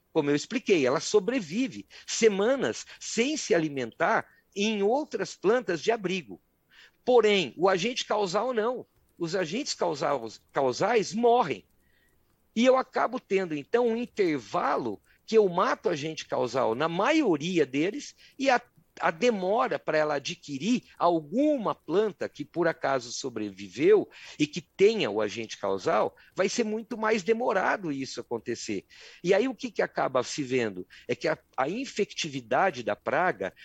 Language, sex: Portuguese, male